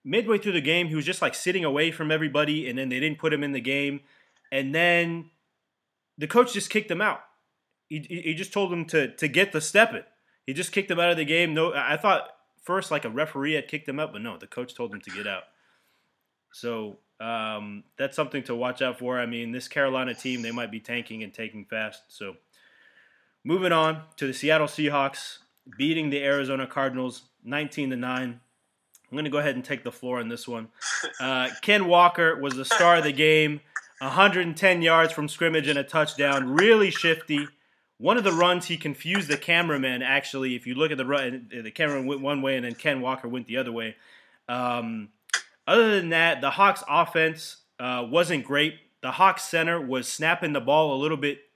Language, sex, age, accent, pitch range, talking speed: English, male, 20-39, American, 130-165 Hz, 205 wpm